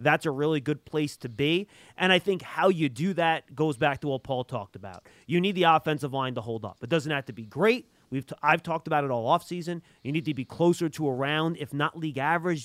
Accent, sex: American, male